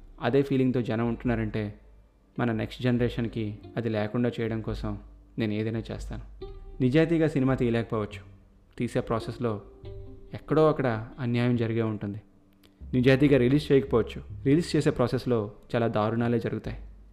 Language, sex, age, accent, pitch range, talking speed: Telugu, male, 30-49, native, 105-130 Hz, 115 wpm